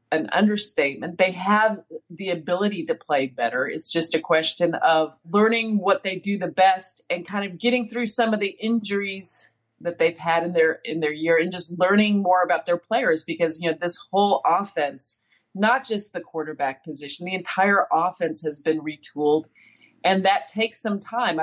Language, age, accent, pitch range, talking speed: English, 40-59, American, 160-200 Hz, 185 wpm